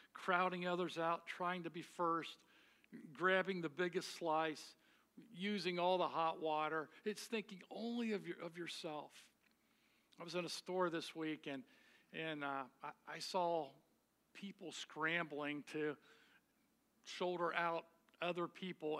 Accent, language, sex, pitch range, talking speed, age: American, English, male, 150-185 Hz, 135 wpm, 50-69